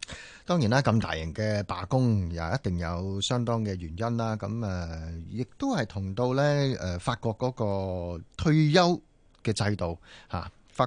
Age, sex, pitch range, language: 30-49, male, 100-135 Hz, Chinese